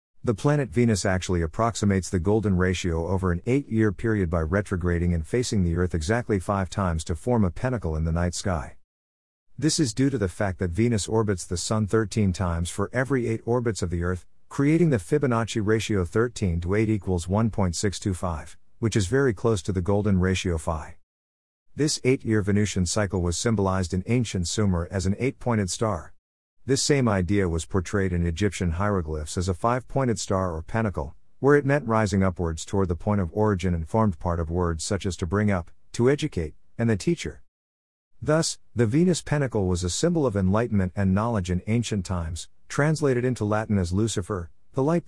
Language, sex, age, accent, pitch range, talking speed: English, male, 50-69, American, 90-115 Hz, 185 wpm